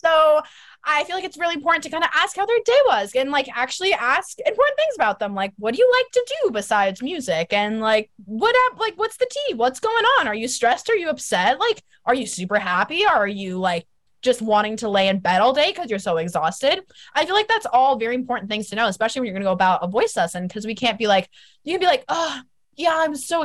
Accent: American